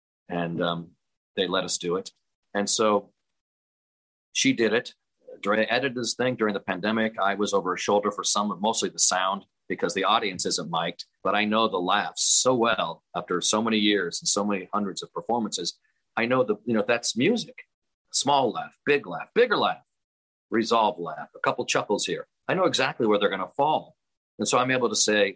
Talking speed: 200 wpm